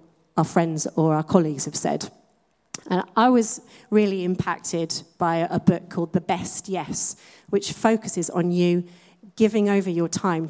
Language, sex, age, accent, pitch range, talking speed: English, female, 40-59, British, 170-205 Hz, 150 wpm